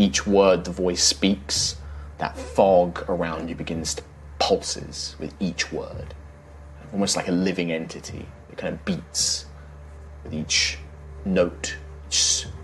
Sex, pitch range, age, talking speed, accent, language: male, 75-95 Hz, 30-49, 135 wpm, British, English